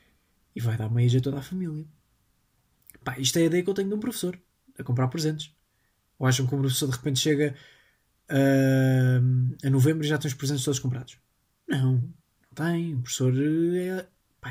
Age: 20-39